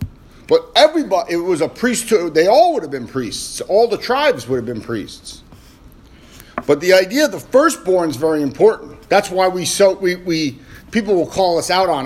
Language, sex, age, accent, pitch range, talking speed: English, male, 50-69, American, 125-175 Hz, 200 wpm